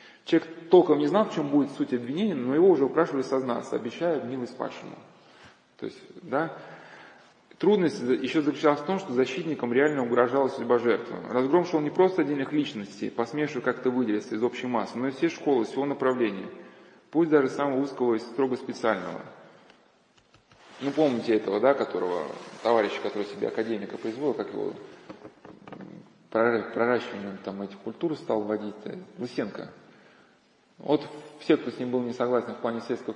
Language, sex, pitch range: Russian, male, 125-165 Hz